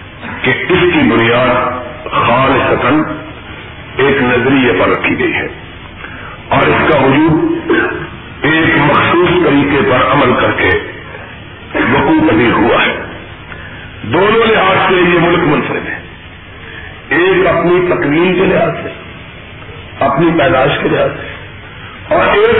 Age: 50-69